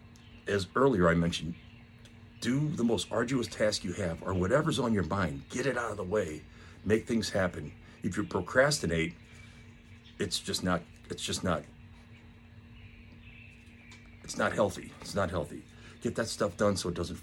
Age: 50-69